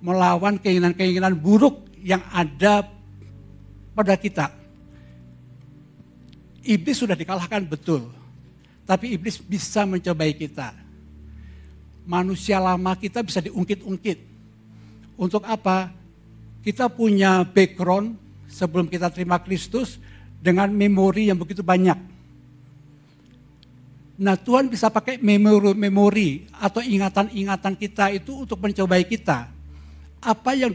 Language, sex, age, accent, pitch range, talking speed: Indonesian, male, 60-79, native, 145-200 Hz, 95 wpm